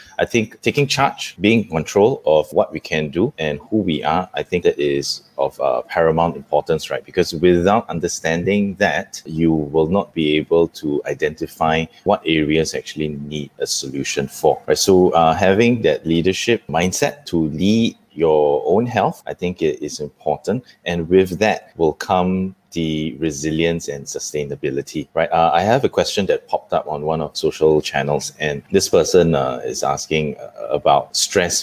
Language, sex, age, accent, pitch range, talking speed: English, male, 20-39, Malaysian, 80-100 Hz, 170 wpm